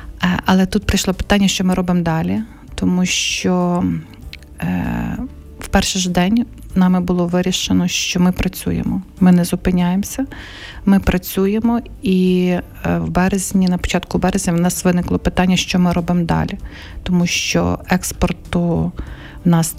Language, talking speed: Ukrainian, 130 wpm